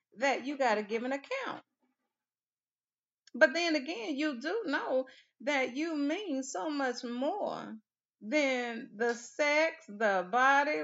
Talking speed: 135 wpm